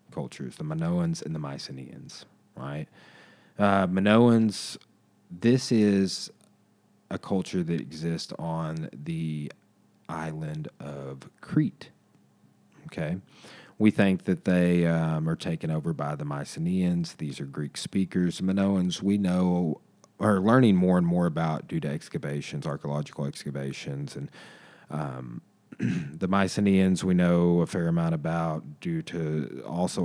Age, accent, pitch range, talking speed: 30-49, American, 75-95 Hz, 125 wpm